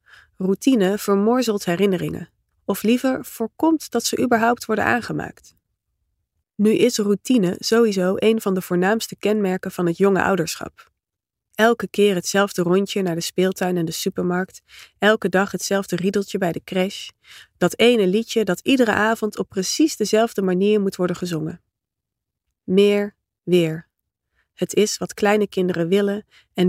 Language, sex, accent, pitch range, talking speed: Dutch, female, Dutch, 175-210 Hz, 140 wpm